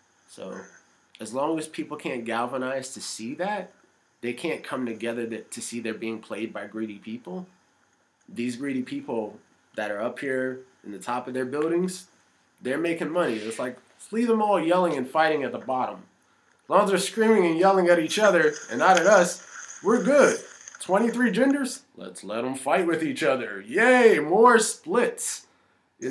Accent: American